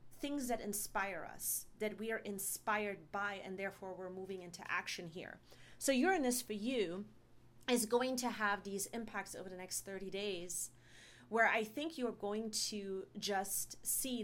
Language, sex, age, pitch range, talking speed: English, female, 30-49, 185-230 Hz, 165 wpm